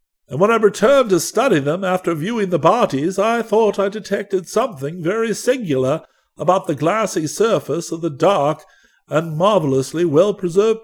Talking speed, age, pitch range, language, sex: 155 wpm, 60-79, 145-210 Hz, English, male